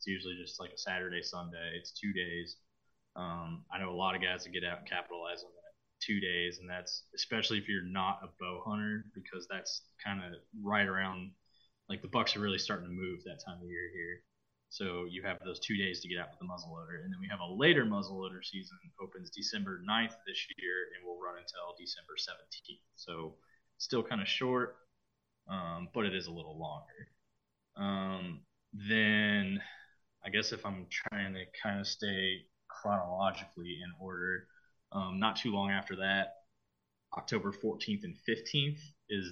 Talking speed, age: 190 wpm, 20-39